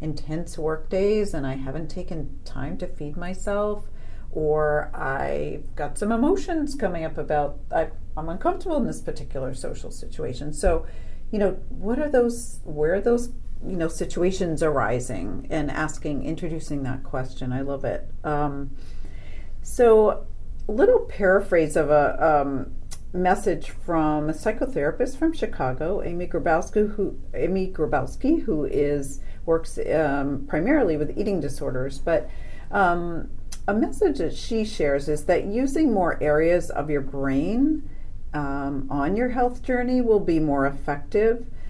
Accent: American